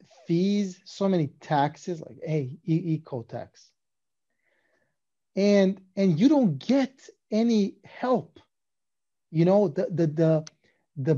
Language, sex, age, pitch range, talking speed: English, male, 30-49, 150-190 Hz, 115 wpm